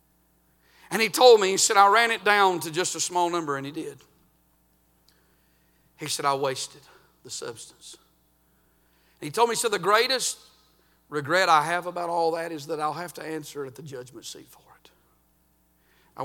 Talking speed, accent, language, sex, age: 180 wpm, American, English, male, 50-69